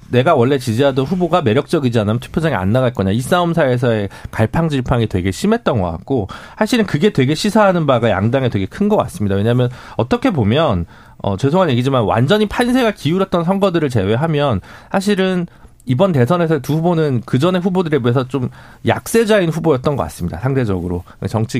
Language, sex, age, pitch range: Korean, male, 40-59, 110-165 Hz